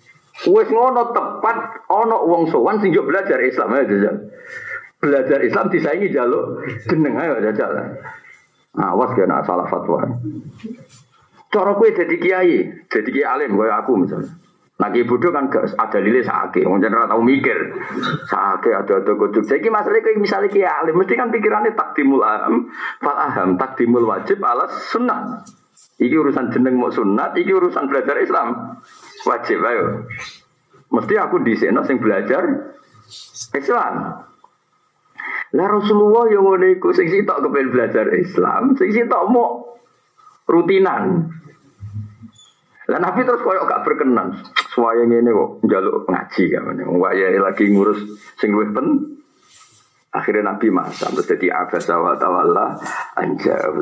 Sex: male